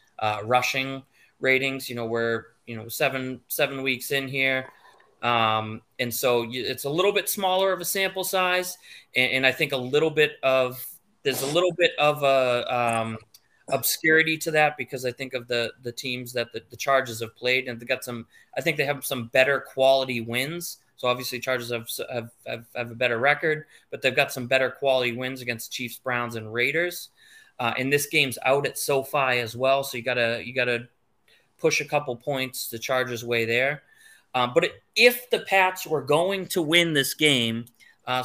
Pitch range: 120-145 Hz